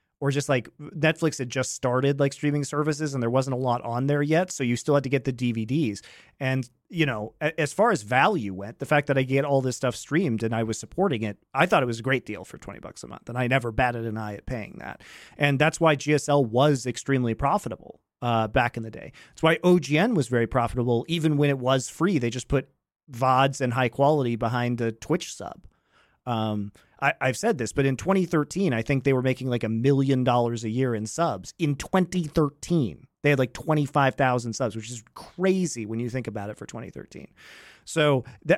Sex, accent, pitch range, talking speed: male, American, 125-165 Hz, 220 wpm